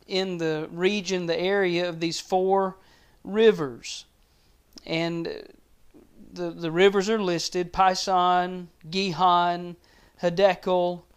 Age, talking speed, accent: 40-59, 95 wpm, American